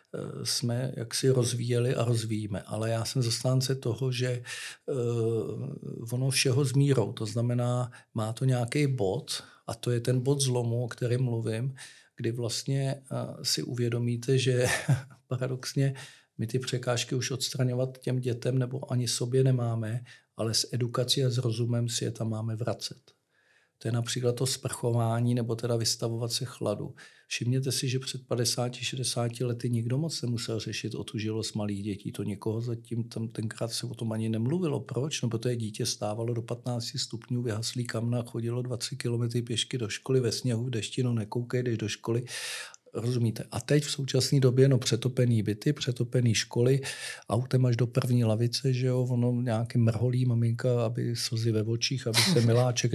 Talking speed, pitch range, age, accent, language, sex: 165 wpm, 115-130 Hz, 50-69, native, Czech, male